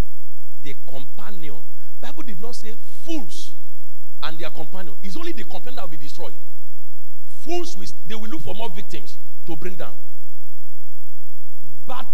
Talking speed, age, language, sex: 150 wpm, 40-59, English, male